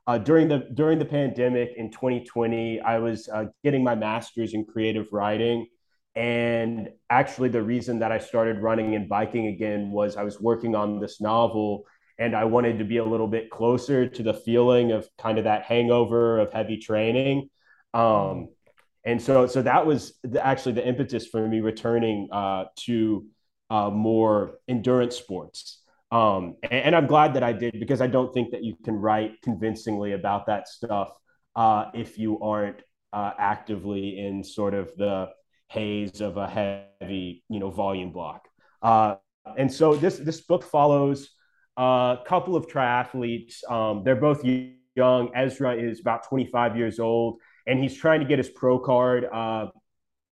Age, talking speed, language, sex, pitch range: 20-39, 170 wpm, English, male, 110-130 Hz